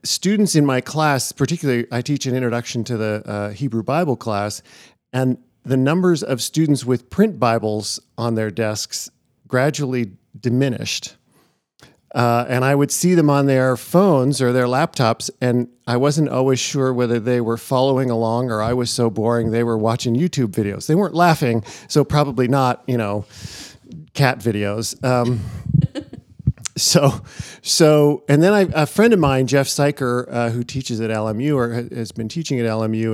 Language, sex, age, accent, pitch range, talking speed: English, male, 50-69, American, 110-135 Hz, 170 wpm